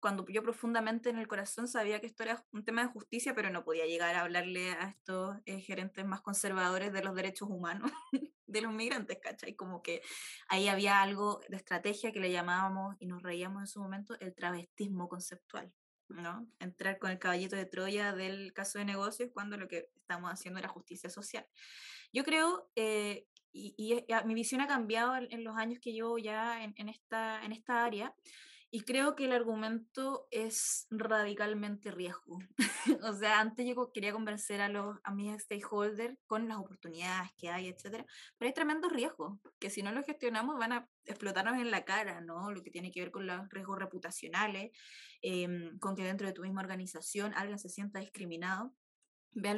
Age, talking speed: 20-39, 190 wpm